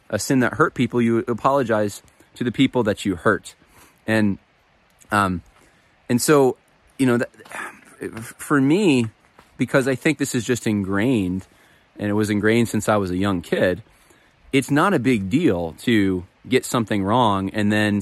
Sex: male